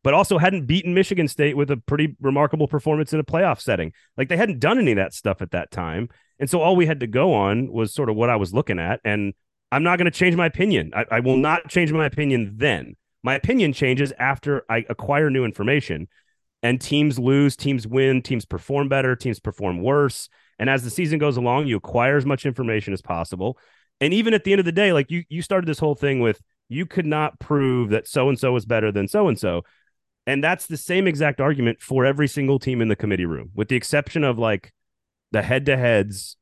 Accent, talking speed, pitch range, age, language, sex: American, 225 wpm, 115-150 Hz, 30-49, English, male